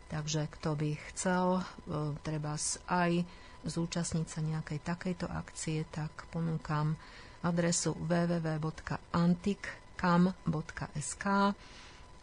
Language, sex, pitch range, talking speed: Slovak, female, 155-175 Hz, 75 wpm